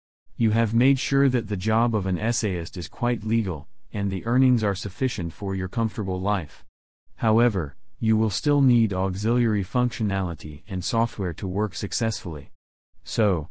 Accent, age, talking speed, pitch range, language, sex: American, 40-59, 155 wpm, 90-110 Hz, English, male